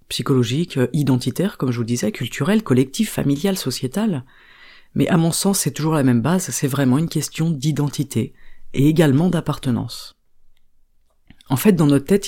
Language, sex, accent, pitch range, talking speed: French, female, French, 130-175 Hz, 160 wpm